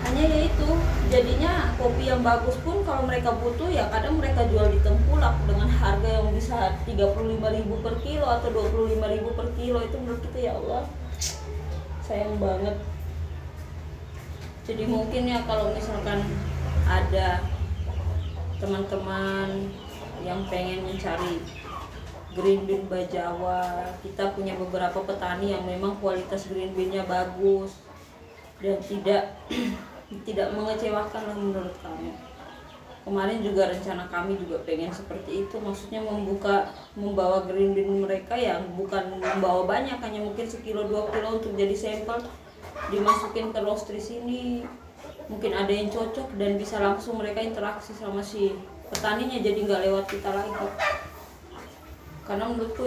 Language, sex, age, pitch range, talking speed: Indonesian, female, 20-39, 170-210 Hz, 130 wpm